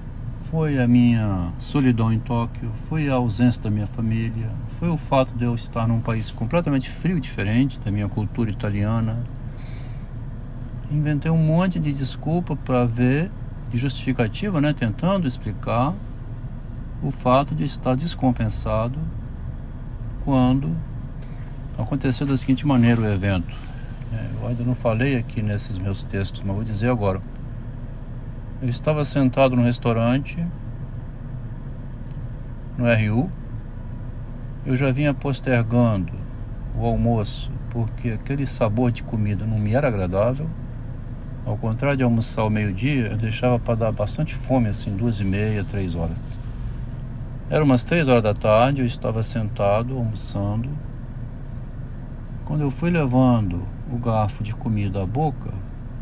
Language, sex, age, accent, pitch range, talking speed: Portuguese, male, 60-79, Brazilian, 115-130 Hz, 130 wpm